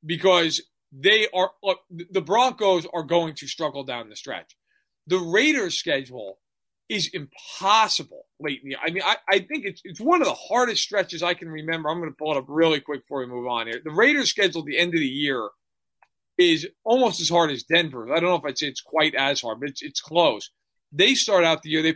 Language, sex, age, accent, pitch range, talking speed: English, male, 40-59, American, 150-195 Hz, 225 wpm